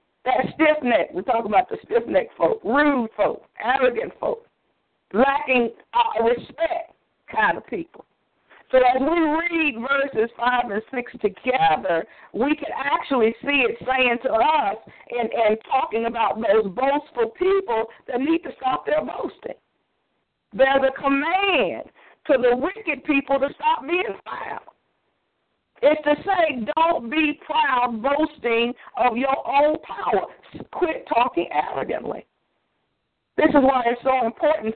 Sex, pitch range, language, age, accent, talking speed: female, 230-305 Hz, English, 50-69, American, 140 wpm